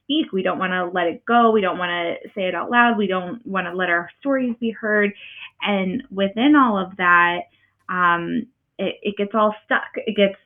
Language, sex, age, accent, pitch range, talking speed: English, female, 20-39, American, 180-225 Hz, 210 wpm